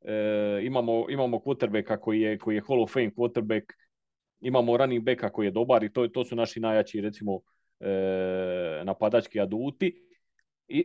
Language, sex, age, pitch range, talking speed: Croatian, male, 40-59, 120-150 Hz, 160 wpm